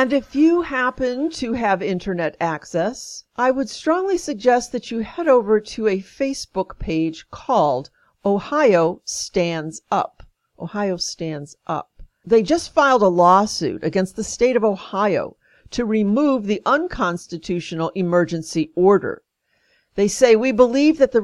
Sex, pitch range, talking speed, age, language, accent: female, 170-230 Hz, 140 wpm, 50-69, English, American